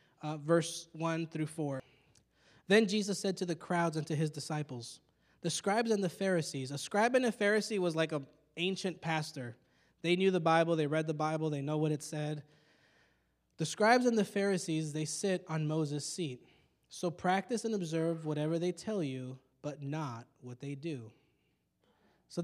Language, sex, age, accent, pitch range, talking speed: English, male, 20-39, American, 135-180 Hz, 180 wpm